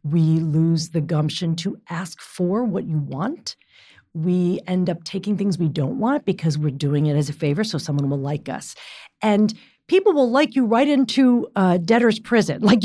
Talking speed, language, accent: 190 wpm, English, American